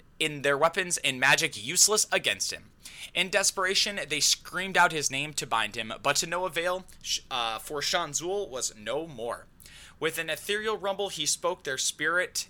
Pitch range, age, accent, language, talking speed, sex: 145-190 Hz, 20-39, American, English, 175 wpm, male